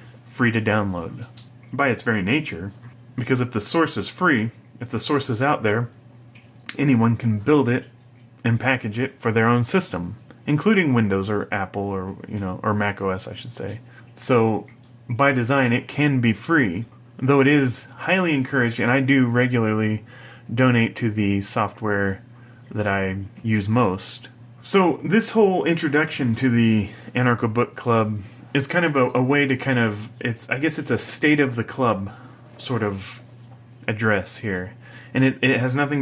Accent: American